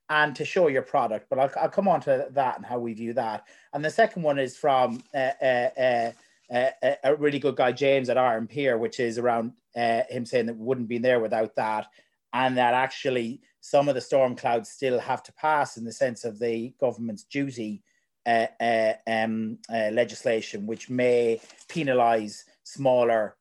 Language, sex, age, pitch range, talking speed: English, male, 30-49, 115-145 Hz, 195 wpm